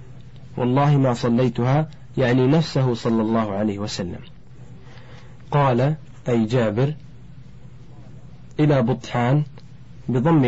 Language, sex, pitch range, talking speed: Arabic, male, 115-135 Hz, 85 wpm